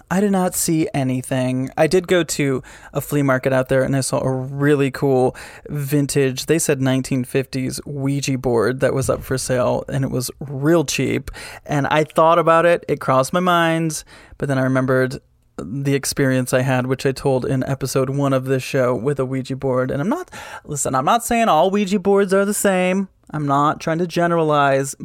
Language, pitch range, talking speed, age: English, 130-165 Hz, 200 wpm, 20-39